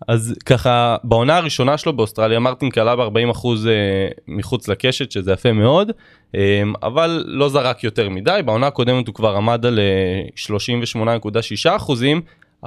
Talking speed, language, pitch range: 125 wpm, Hebrew, 110-130 Hz